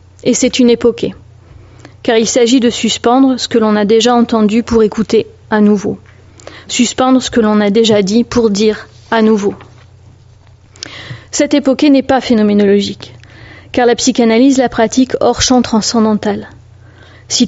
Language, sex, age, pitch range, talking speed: French, female, 30-49, 200-245 Hz, 150 wpm